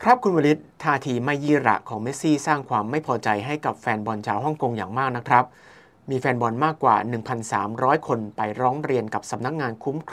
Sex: male